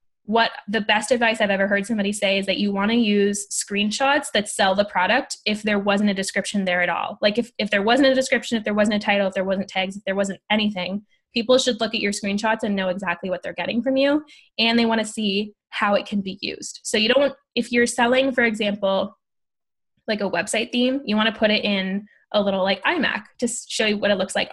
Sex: female